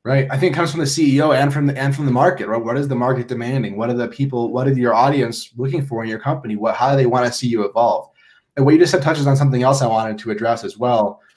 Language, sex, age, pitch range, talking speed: English, male, 20-39, 120-145 Hz, 305 wpm